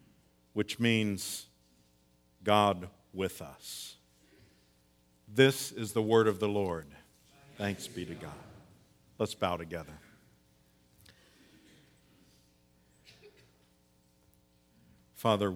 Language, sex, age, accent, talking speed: English, male, 50-69, American, 75 wpm